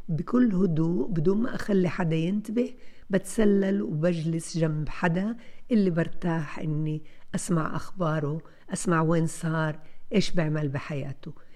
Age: 60-79